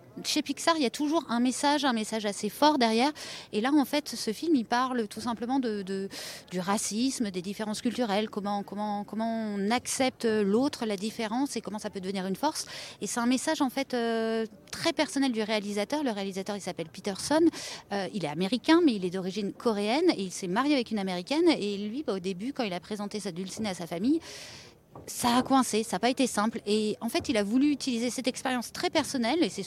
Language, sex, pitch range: French, female, 205-265 Hz